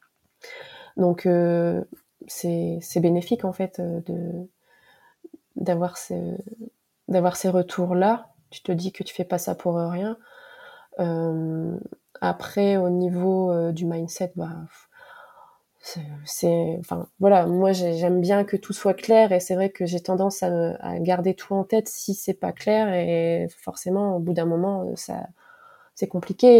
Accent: French